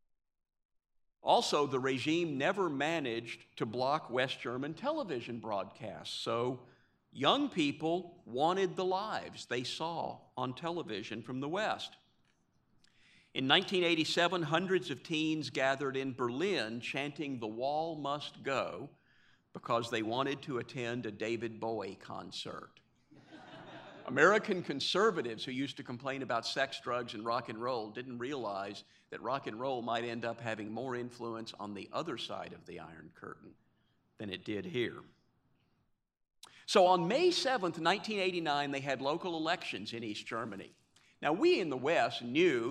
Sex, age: male, 50-69